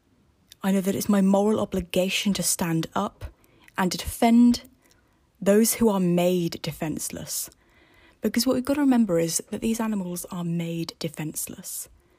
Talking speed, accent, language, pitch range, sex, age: 150 wpm, British, English, 175-230 Hz, female, 20-39